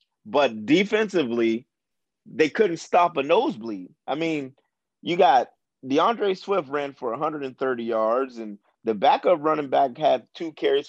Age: 30-49